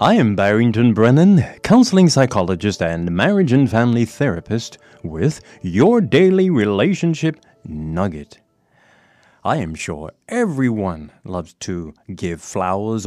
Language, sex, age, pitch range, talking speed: English, male, 30-49, 90-140 Hz, 110 wpm